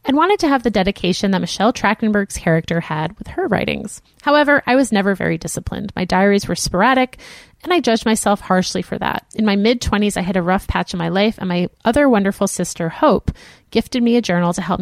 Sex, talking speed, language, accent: female, 220 wpm, English, American